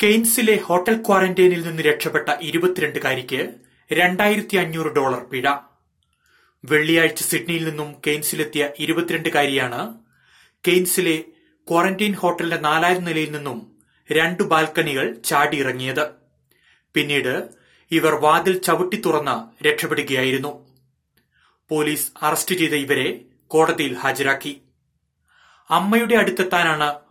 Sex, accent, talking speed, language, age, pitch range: male, native, 80 wpm, Malayalam, 30-49, 150-180 Hz